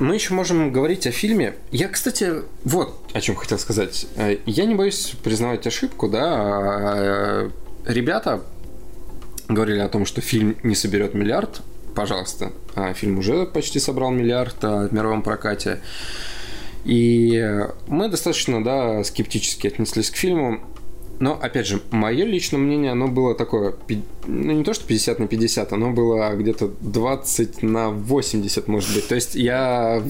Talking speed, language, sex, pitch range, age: 150 wpm, Russian, male, 105-125 Hz, 20-39